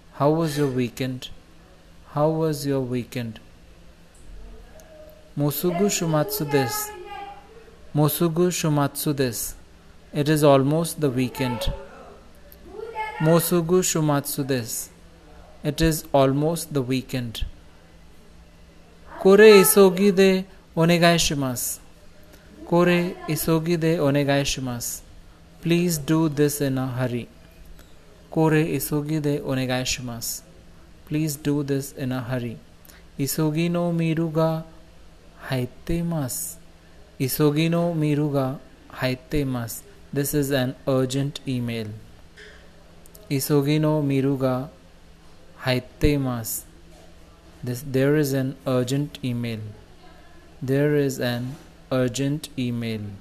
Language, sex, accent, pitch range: Japanese, male, Indian, 105-155 Hz